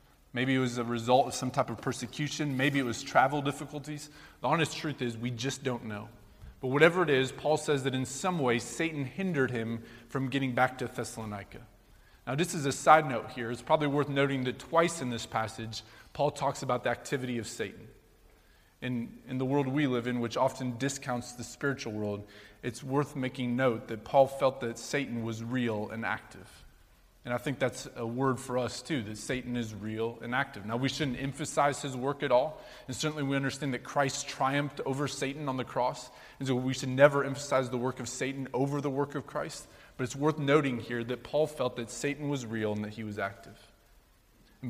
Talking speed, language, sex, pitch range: 210 wpm, English, male, 115-140 Hz